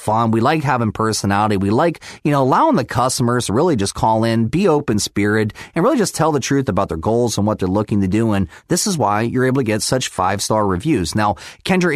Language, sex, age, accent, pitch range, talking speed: English, male, 30-49, American, 110-160 Hz, 245 wpm